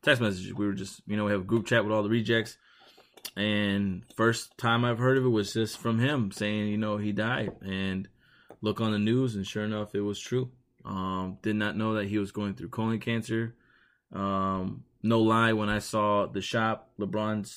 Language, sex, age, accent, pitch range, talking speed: English, male, 20-39, American, 100-110 Hz, 215 wpm